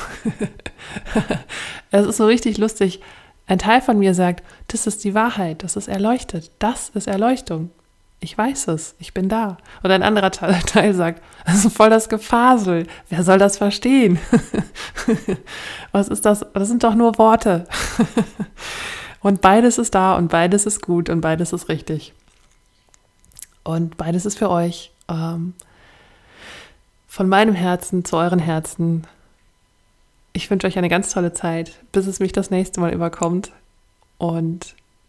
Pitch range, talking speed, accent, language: 170-210 Hz, 145 wpm, German, German